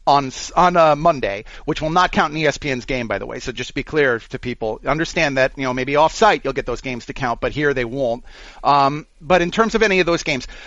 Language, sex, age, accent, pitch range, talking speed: English, male, 30-49, American, 145-210 Hz, 260 wpm